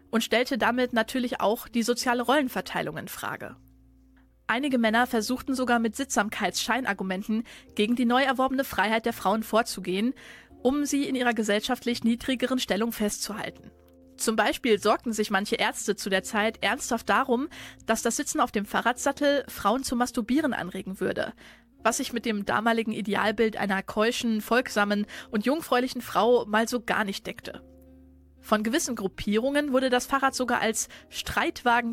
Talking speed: 150 wpm